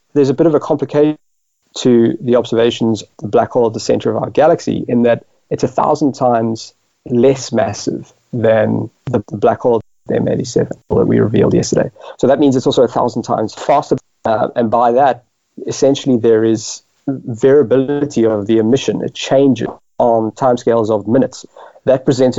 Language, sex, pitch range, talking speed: English, male, 115-135 Hz, 175 wpm